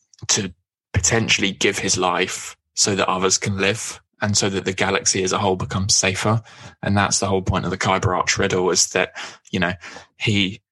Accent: British